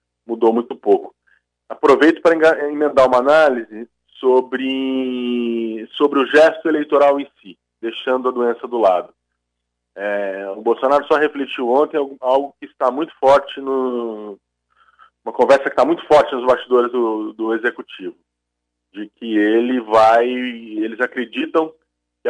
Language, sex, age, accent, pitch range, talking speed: Portuguese, male, 20-39, Brazilian, 110-140 Hz, 135 wpm